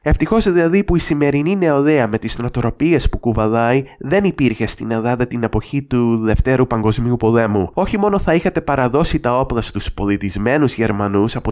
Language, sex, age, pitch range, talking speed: English, male, 20-39, 115-145 Hz, 165 wpm